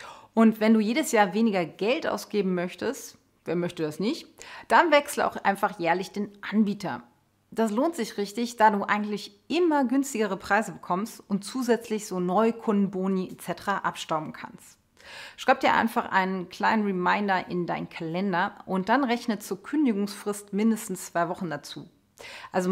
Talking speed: 150 wpm